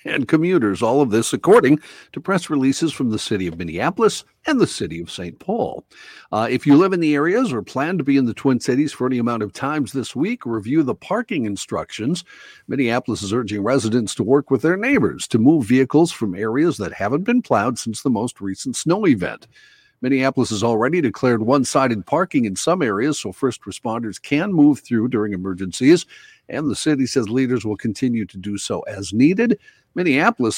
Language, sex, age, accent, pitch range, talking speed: English, male, 50-69, American, 110-145 Hz, 195 wpm